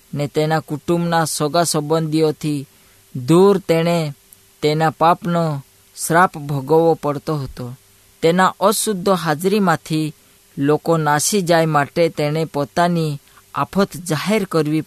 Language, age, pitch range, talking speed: Hindi, 20-39, 145-170 Hz, 75 wpm